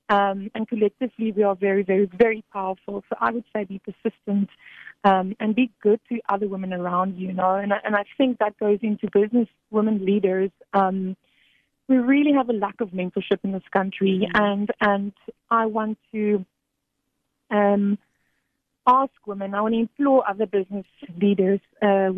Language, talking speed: English, 175 wpm